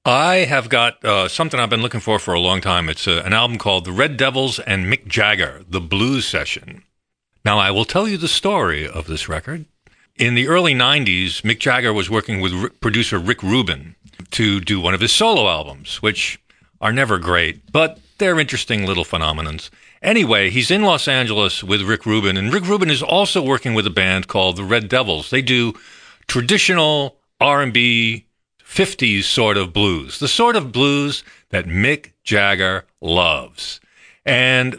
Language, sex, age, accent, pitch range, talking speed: English, male, 50-69, American, 100-140 Hz, 175 wpm